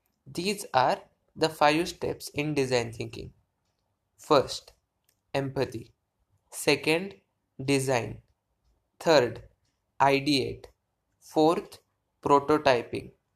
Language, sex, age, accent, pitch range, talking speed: English, male, 20-39, Indian, 105-155 Hz, 70 wpm